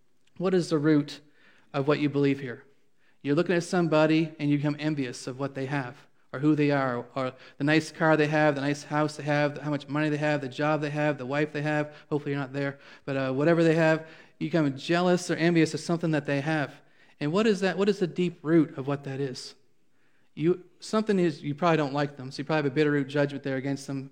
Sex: male